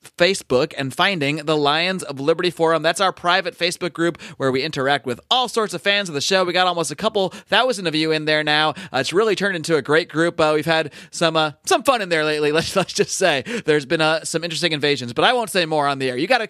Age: 30-49